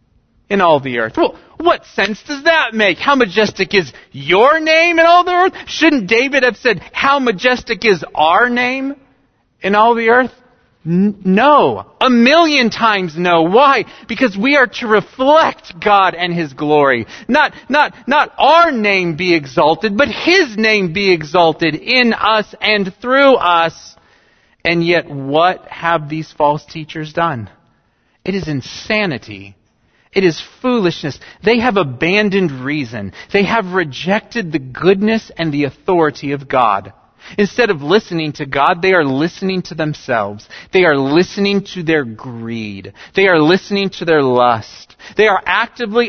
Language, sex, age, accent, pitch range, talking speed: English, male, 40-59, American, 160-245 Hz, 150 wpm